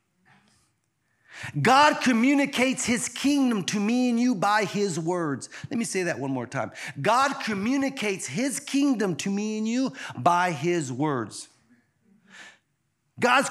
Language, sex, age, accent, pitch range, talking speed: English, male, 40-59, American, 150-250 Hz, 135 wpm